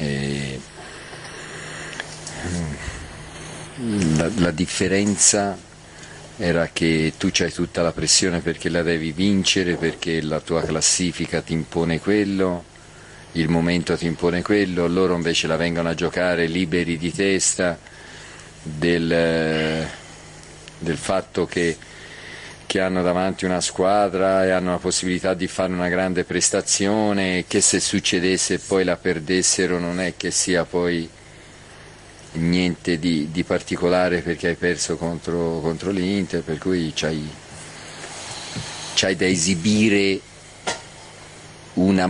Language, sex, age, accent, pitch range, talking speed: Italian, male, 40-59, native, 80-95 Hz, 115 wpm